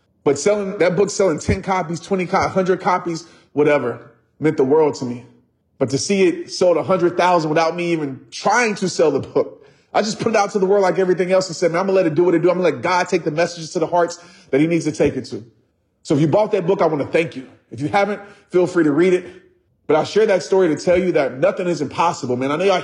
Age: 30-49